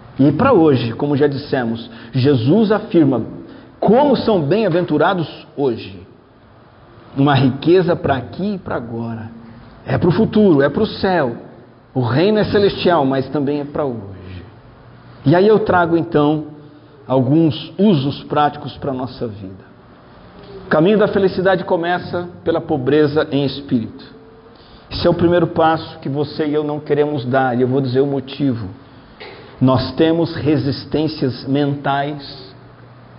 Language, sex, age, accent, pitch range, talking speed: Portuguese, male, 50-69, Brazilian, 130-165 Hz, 145 wpm